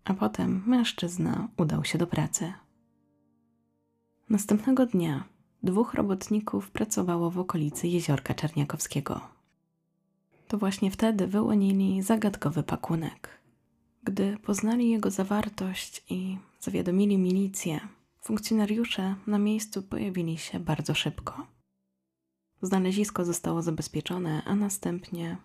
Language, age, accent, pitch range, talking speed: Polish, 20-39, native, 165-215 Hz, 95 wpm